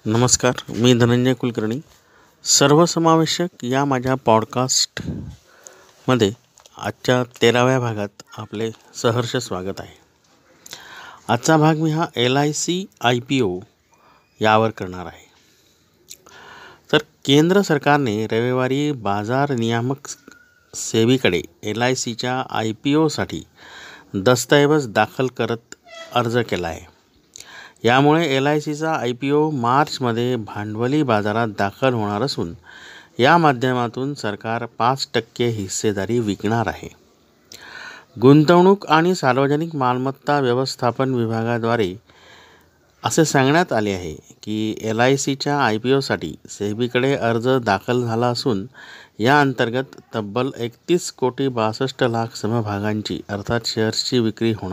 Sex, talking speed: male, 100 wpm